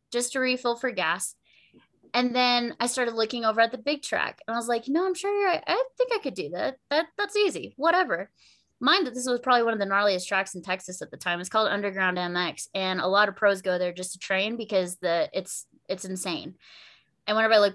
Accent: American